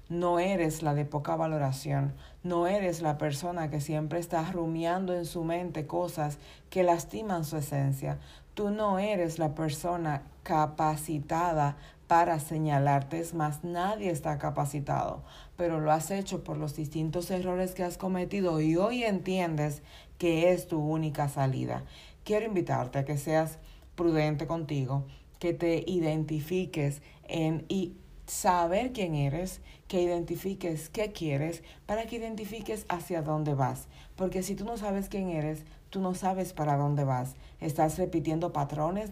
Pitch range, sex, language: 155-185 Hz, female, Spanish